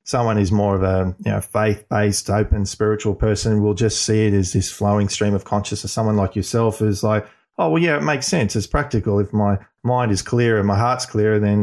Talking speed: 230 wpm